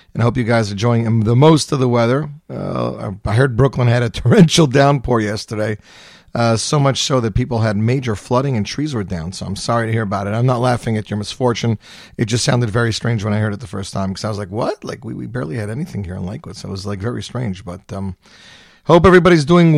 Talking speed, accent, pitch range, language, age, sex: 255 wpm, American, 110-140 Hz, English, 40-59, male